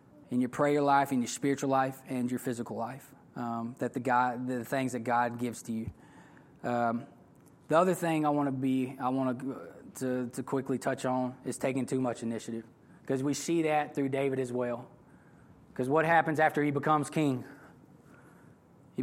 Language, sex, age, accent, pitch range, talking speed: English, male, 20-39, American, 130-155 Hz, 190 wpm